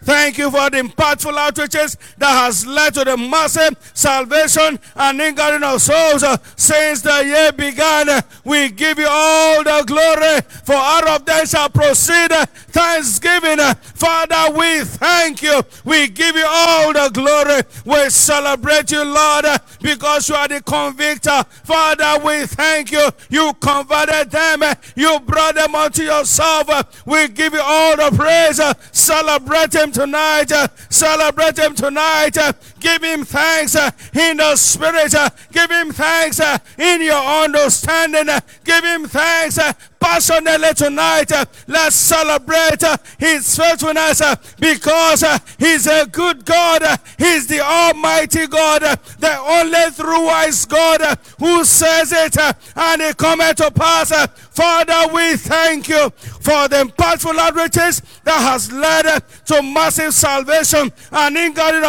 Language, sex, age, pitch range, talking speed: English, male, 50-69, 295-320 Hz, 155 wpm